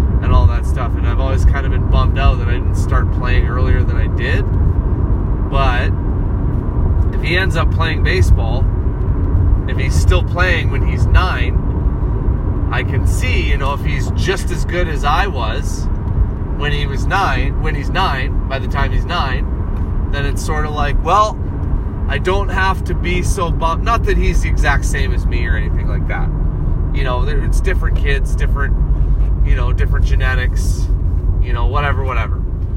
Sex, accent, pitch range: male, American, 80-115 Hz